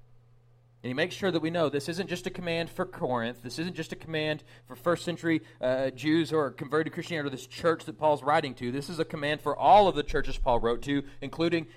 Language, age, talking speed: English, 30-49, 250 wpm